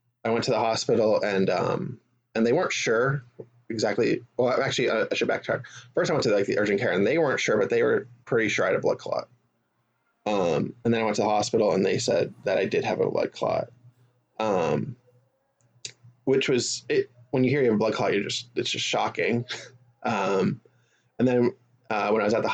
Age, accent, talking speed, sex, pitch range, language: 20-39, American, 225 wpm, male, 115-125 Hz, English